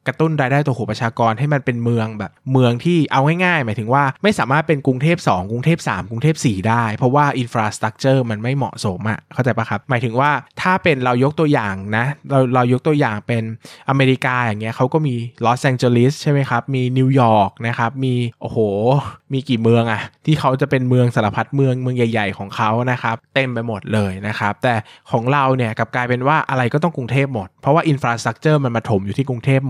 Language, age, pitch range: Thai, 20-39, 115-145 Hz